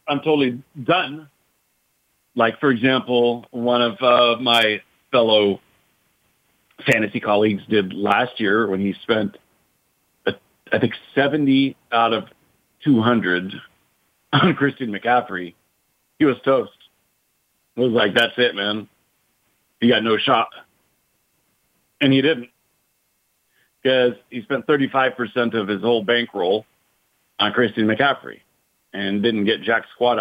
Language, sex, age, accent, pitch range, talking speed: English, male, 50-69, American, 100-125 Hz, 120 wpm